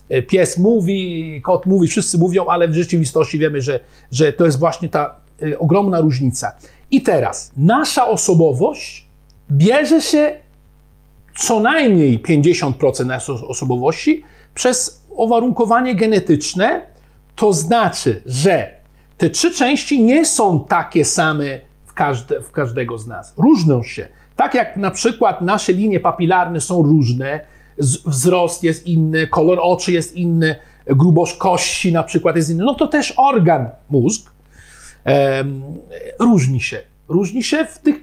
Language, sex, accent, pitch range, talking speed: Polish, male, native, 150-215 Hz, 135 wpm